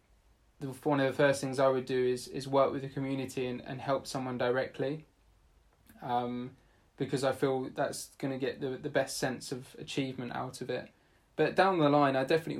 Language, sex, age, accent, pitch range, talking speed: English, male, 20-39, British, 125-145 Hz, 200 wpm